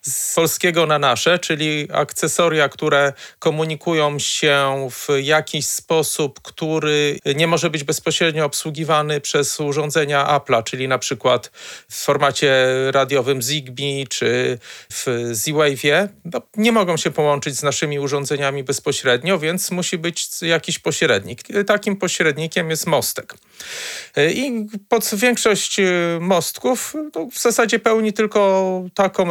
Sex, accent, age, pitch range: male, native, 40-59, 145-170 Hz